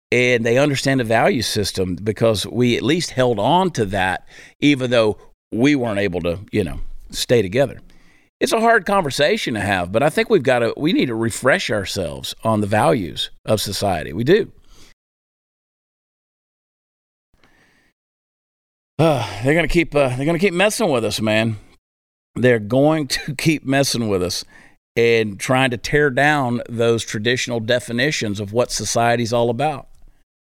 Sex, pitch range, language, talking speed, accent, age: male, 105-135 Hz, English, 160 wpm, American, 50-69